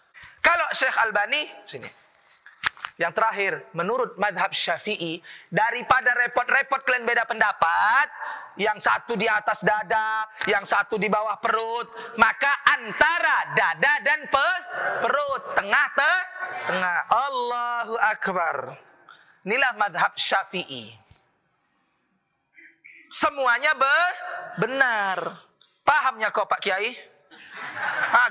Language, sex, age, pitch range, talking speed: Indonesian, male, 30-49, 215-345 Hz, 90 wpm